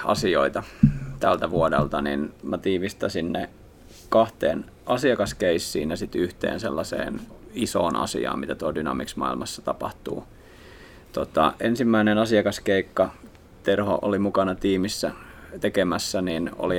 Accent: native